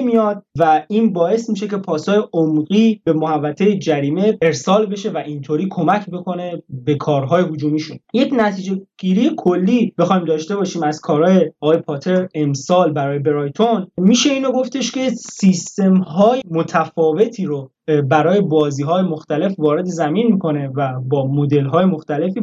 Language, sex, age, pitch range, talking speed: Persian, male, 20-39, 150-205 Hz, 140 wpm